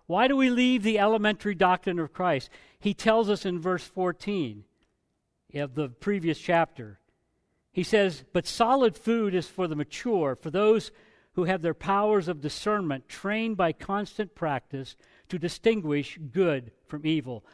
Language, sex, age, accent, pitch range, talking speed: English, male, 50-69, American, 155-215 Hz, 155 wpm